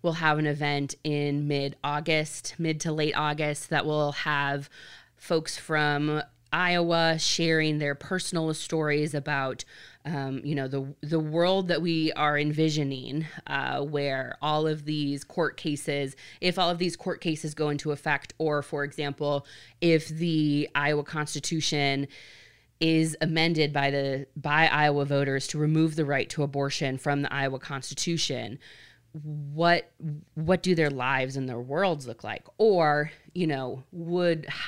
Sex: female